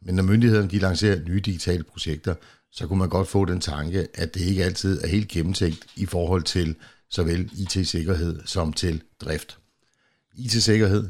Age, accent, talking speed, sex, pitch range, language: 60-79, native, 170 wpm, male, 80-95 Hz, Danish